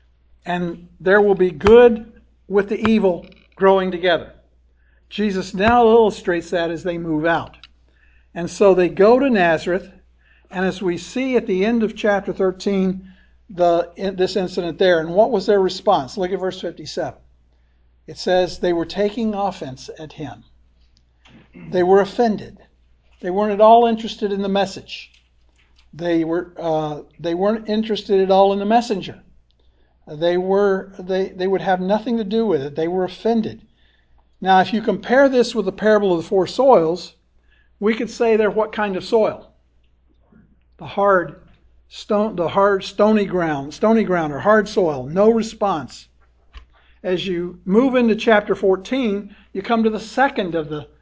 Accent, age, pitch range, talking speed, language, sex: American, 60-79, 165-210 Hz, 165 wpm, English, male